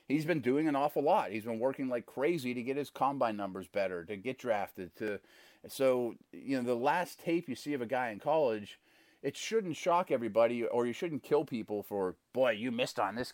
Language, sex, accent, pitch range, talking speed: English, male, American, 105-145 Hz, 215 wpm